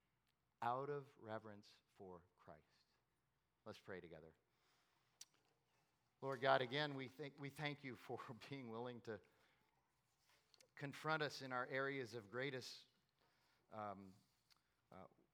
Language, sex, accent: English, male, American